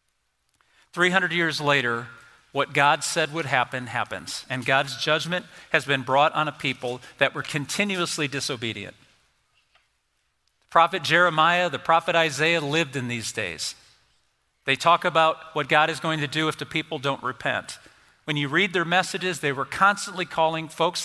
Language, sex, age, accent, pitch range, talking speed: English, male, 50-69, American, 140-170 Hz, 160 wpm